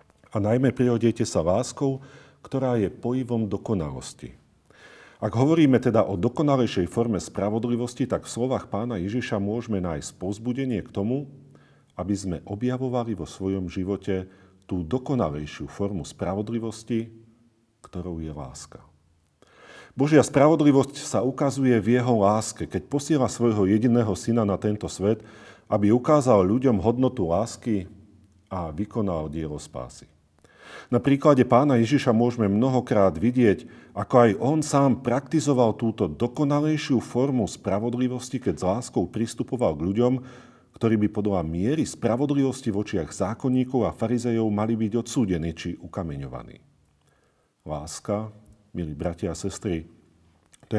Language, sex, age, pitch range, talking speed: Slovak, male, 40-59, 100-125 Hz, 125 wpm